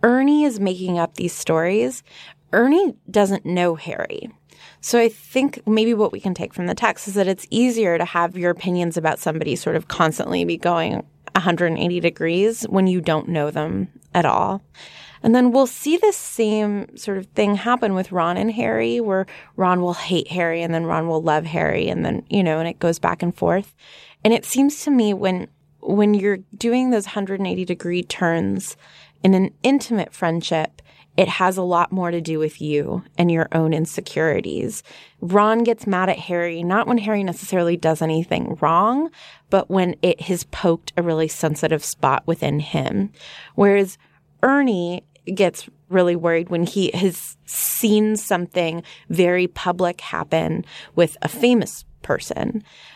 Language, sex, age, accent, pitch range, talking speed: English, female, 20-39, American, 170-210 Hz, 170 wpm